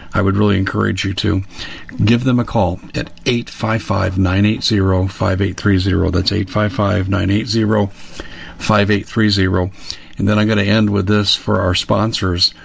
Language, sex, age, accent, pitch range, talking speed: English, male, 50-69, American, 95-110 Hz, 120 wpm